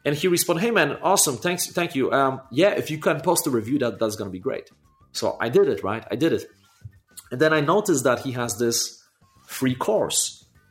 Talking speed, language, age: 225 wpm, Romanian, 30-49